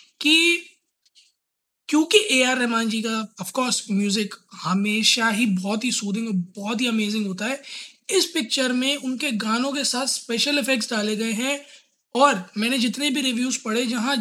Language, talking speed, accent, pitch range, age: Hindi, 170 wpm, native, 215-260 Hz, 20-39